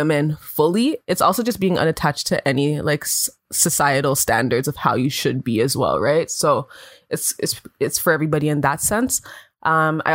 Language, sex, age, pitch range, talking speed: English, female, 20-39, 150-180 Hz, 185 wpm